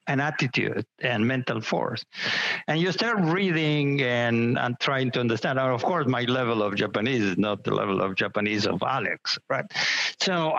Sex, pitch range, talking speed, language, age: male, 110-135 Hz, 170 wpm, English, 60-79